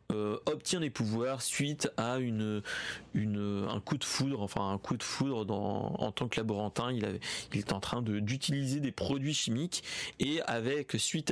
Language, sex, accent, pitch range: French, male, French, 110-155 Hz